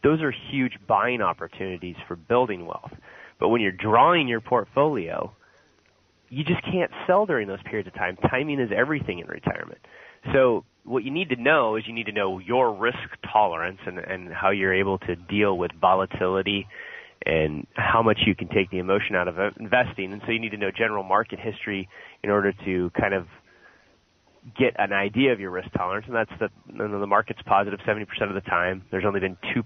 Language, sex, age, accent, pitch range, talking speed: English, male, 30-49, American, 95-115 Hz, 195 wpm